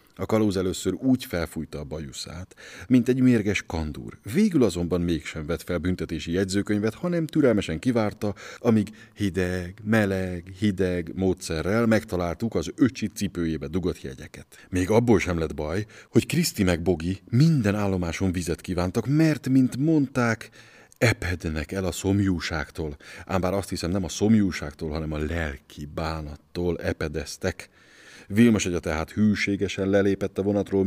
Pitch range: 85-105 Hz